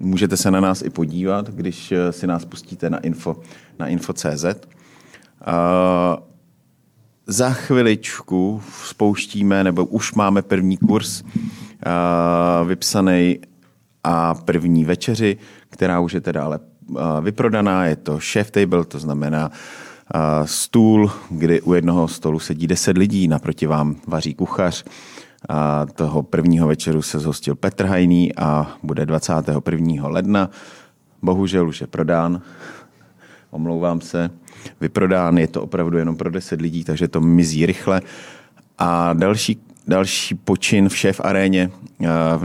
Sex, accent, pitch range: male, native, 80-95 Hz